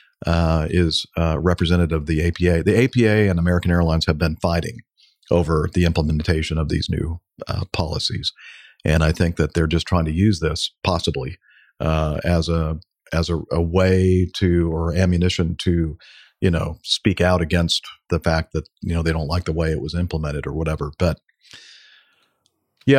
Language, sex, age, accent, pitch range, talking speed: English, male, 50-69, American, 80-95 Hz, 175 wpm